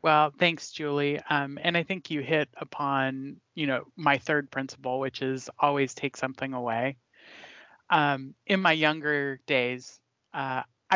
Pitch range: 130-150 Hz